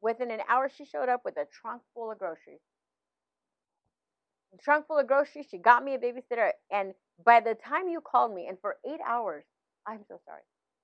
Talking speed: 200 wpm